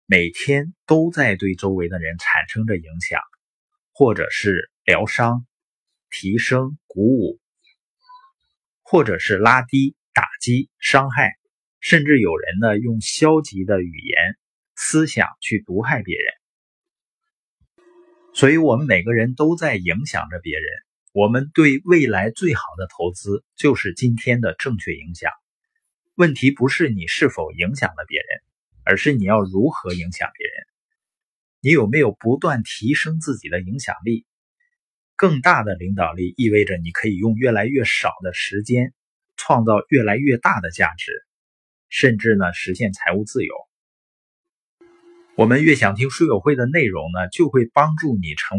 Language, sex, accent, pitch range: Chinese, male, native, 105-160 Hz